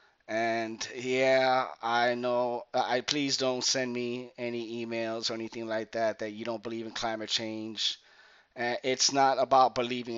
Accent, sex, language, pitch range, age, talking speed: American, male, English, 110-135 Hz, 30-49, 160 wpm